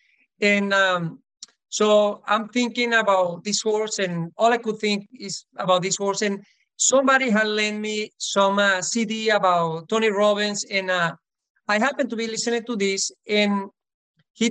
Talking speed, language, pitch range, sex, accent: 160 wpm, English, 205-235 Hz, male, Spanish